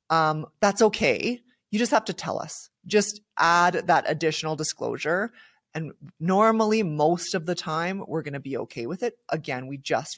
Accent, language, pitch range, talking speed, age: American, English, 145-175 Hz, 175 wpm, 20-39